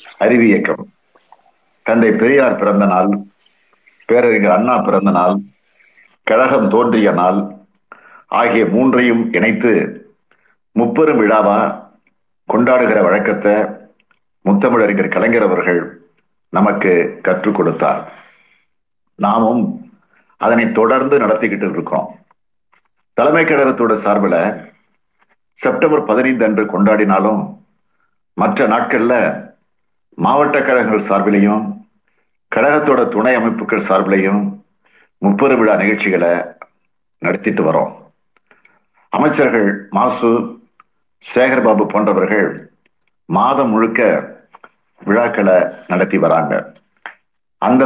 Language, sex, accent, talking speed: Tamil, male, native, 75 wpm